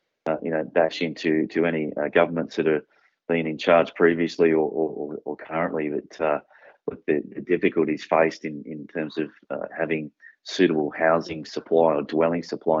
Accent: Australian